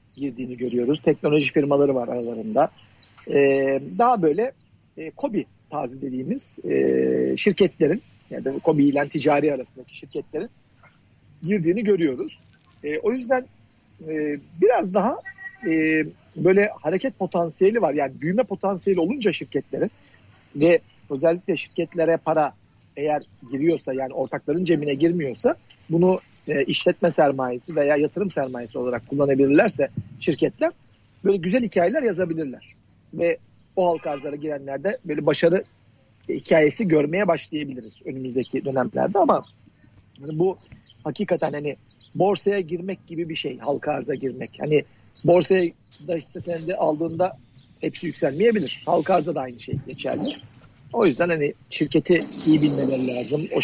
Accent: native